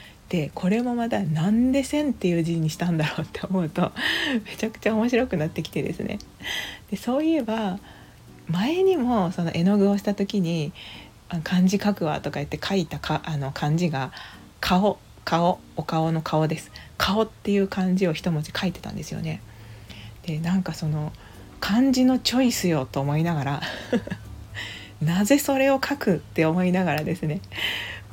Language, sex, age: Japanese, female, 40-59